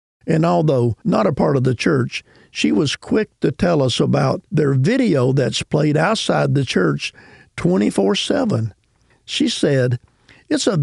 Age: 50-69